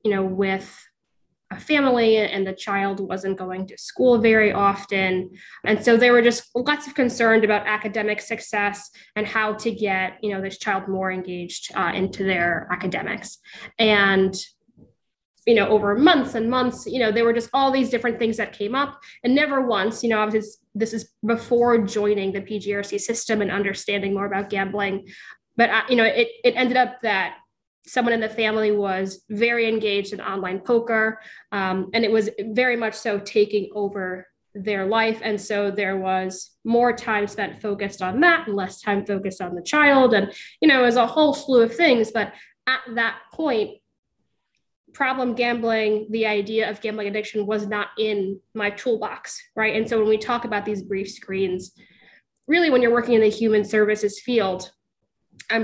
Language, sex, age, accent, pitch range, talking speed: English, female, 10-29, American, 195-230 Hz, 180 wpm